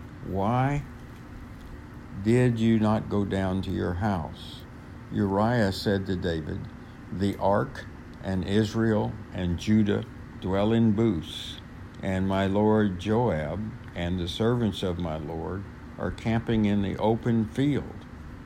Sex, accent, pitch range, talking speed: male, American, 90-110 Hz, 125 wpm